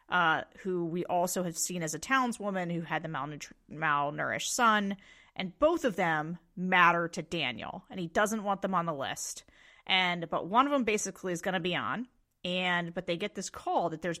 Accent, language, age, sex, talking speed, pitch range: American, English, 30-49, female, 205 wpm, 170-210 Hz